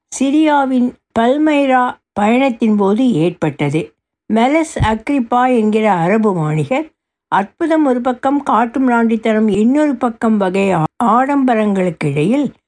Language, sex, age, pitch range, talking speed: Tamil, female, 60-79, 195-265 Hz, 95 wpm